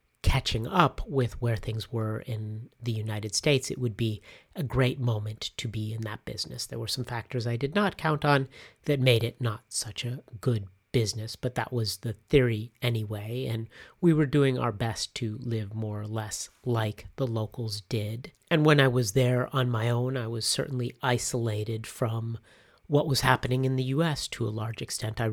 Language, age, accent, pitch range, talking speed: English, 40-59, American, 110-130 Hz, 195 wpm